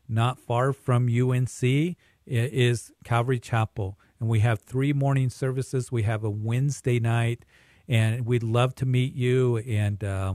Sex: male